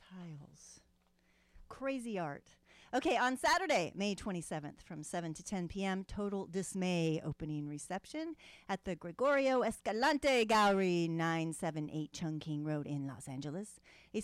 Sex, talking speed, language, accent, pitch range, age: female, 120 wpm, English, American, 170-265 Hz, 40-59